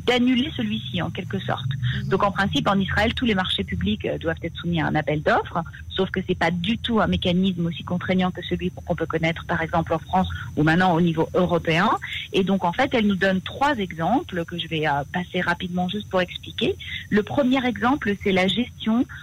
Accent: French